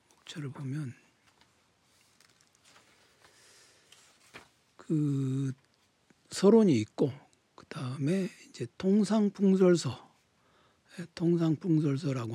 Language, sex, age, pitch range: Korean, male, 60-79, 130-165 Hz